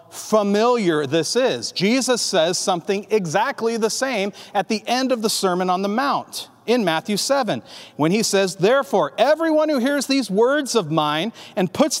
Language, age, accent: English, 40-59, American